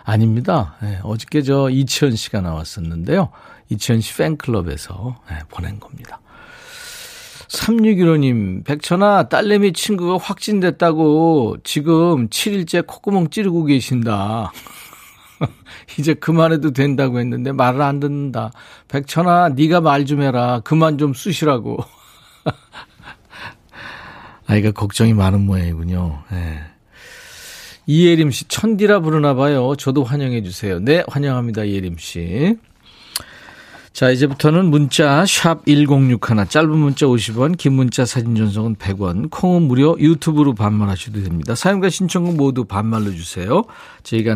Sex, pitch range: male, 110-165 Hz